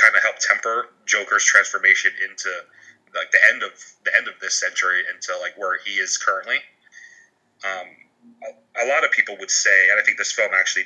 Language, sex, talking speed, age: English, male, 200 wpm, 30-49